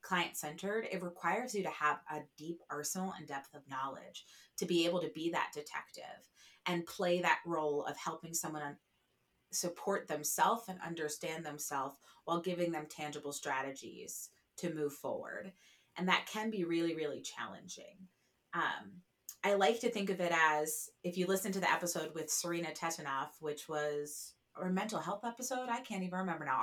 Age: 30-49